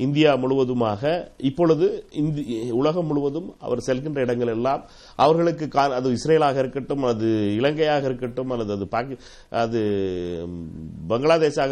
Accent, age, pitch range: native, 60-79, 125-175 Hz